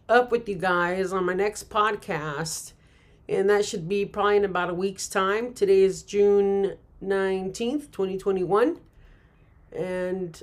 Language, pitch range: English, 185-210 Hz